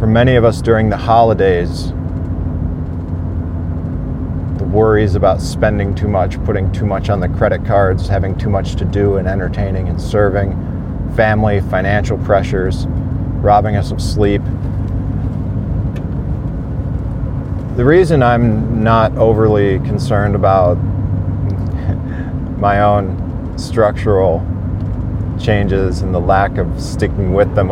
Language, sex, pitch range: English, male, 90-105 Hz